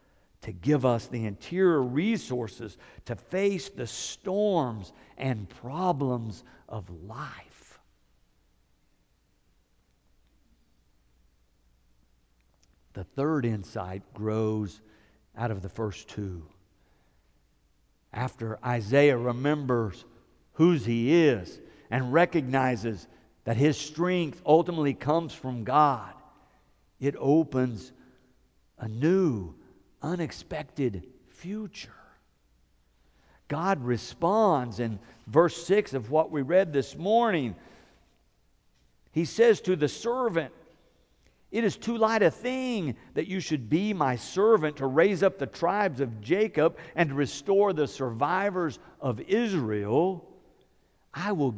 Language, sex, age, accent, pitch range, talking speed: English, male, 60-79, American, 110-180 Hz, 100 wpm